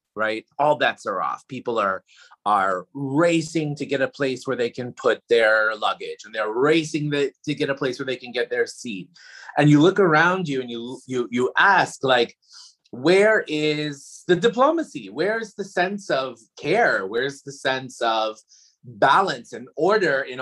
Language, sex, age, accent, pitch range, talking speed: English, male, 30-49, American, 120-165 Hz, 180 wpm